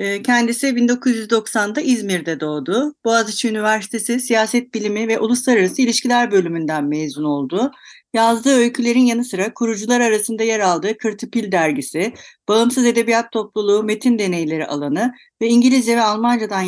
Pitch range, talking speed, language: 200-260 Hz, 120 wpm, Turkish